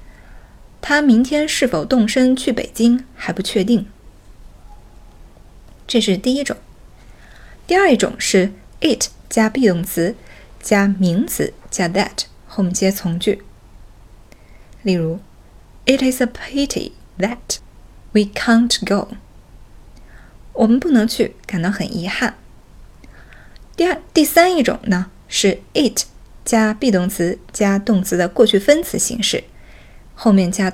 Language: Chinese